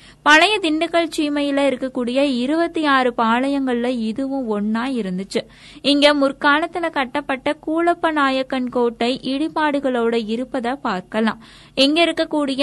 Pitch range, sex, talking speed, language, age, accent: 235-290 Hz, female, 95 wpm, Tamil, 20-39, native